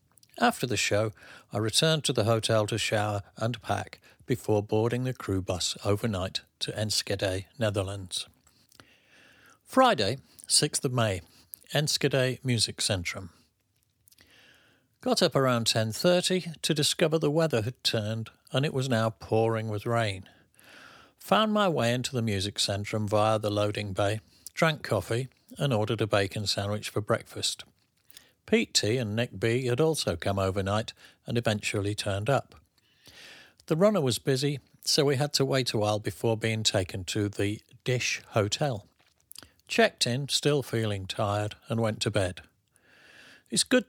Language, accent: English, British